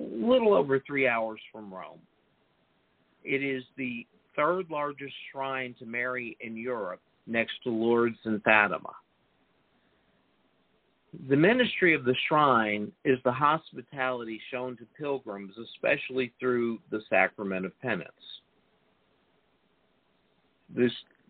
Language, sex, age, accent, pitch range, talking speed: English, male, 50-69, American, 110-140 Hz, 110 wpm